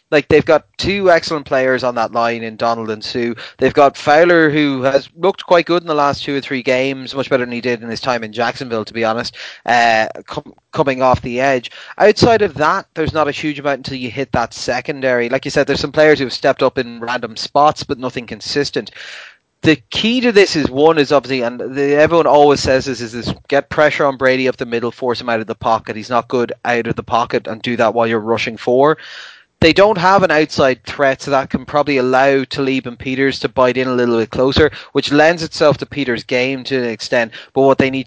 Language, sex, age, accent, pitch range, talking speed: English, male, 20-39, Irish, 120-150 Hz, 240 wpm